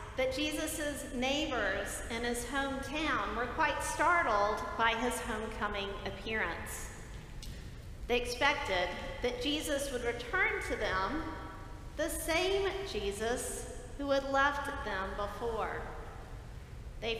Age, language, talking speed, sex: 40-59, English, 105 wpm, female